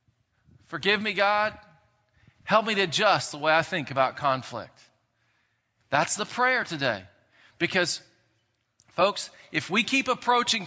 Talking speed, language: 130 wpm, English